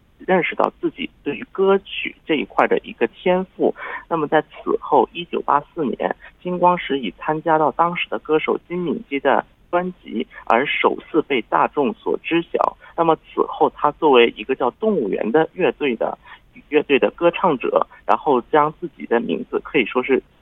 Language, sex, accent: Korean, male, Chinese